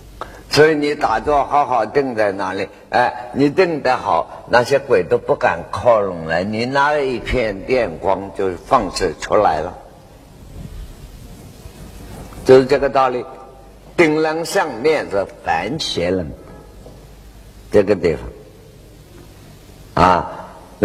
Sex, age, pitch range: male, 50-69, 115-160 Hz